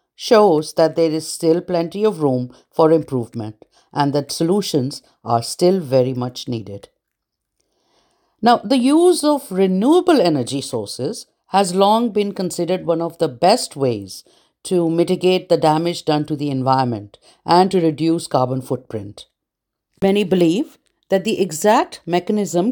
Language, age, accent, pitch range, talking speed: English, 50-69, Indian, 145-190 Hz, 140 wpm